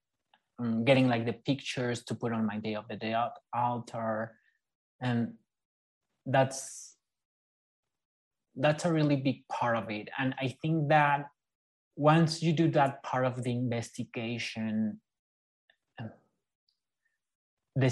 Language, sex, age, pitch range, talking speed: English, male, 20-39, 115-135 Hz, 115 wpm